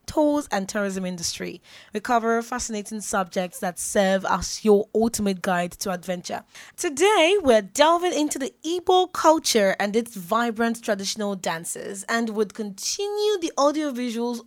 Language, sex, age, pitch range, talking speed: English, female, 20-39, 200-265 Hz, 140 wpm